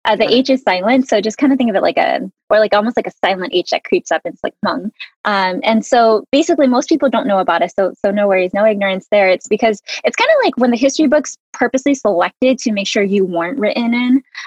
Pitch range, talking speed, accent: 190-245 Hz, 265 wpm, American